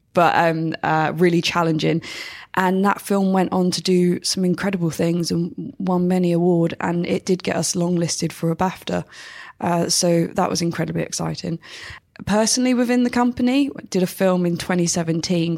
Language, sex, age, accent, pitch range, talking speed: English, female, 20-39, British, 165-185 Hz, 170 wpm